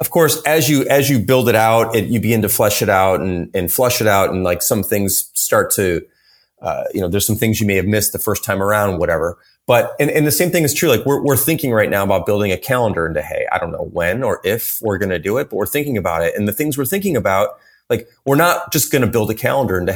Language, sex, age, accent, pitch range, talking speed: English, male, 30-49, American, 95-130 Hz, 285 wpm